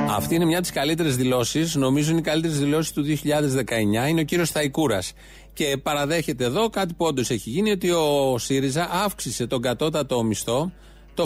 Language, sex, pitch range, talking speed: Greek, male, 125-200 Hz, 180 wpm